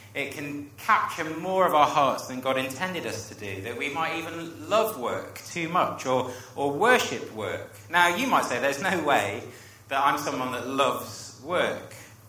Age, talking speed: 30-49, 185 wpm